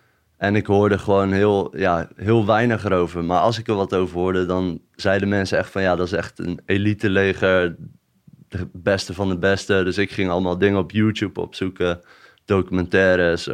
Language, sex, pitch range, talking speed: Dutch, male, 90-105 Hz, 185 wpm